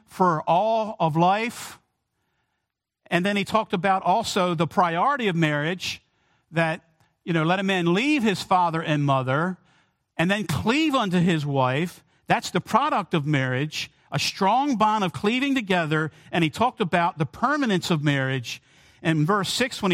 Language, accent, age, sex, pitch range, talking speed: English, American, 50-69, male, 140-190 Hz, 165 wpm